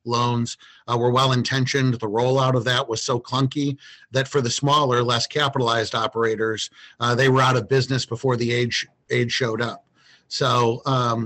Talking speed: 170 wpm